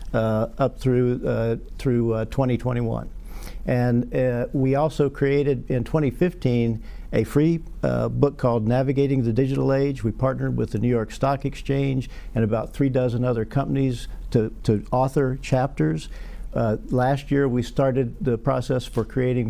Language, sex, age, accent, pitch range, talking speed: English, male, 50-69, American, 115-135 Hz, 155 wpm